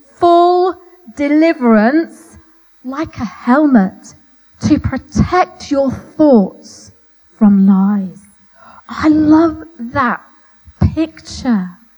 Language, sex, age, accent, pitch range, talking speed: English, female, 30-49, British, 230-310 Hz, 75 wpm